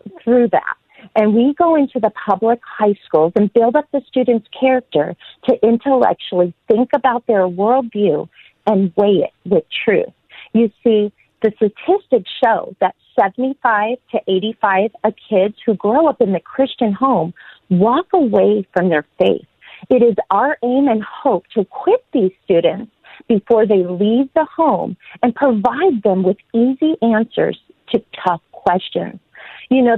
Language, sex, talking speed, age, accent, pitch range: English, female, 150 wpm, 40-59, American, 200-265 Hz